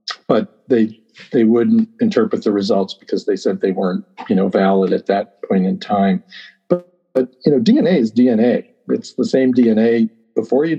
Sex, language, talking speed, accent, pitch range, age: male, English, 185 wpm, American, 110-160 Hz, 50-69